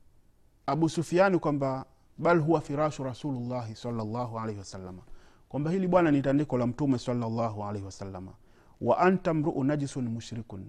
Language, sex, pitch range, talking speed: Swahili, male, 105-135 Hz, 135 wpm